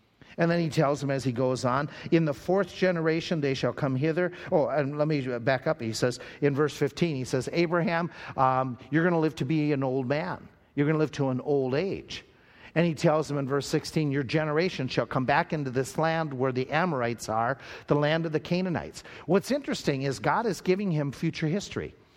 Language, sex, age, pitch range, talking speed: English, male, 50-69, 130-170 Hz, 220 wpm